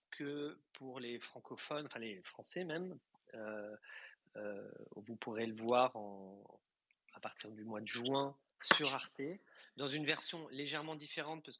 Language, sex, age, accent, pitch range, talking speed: English, male, 30-49, French, 105-130 Hz, 145 wpm